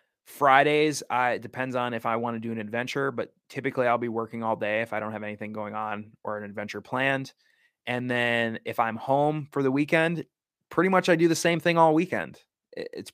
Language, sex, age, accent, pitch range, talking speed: English, male, 20-39, American, 110-140 Hz, 220 wpm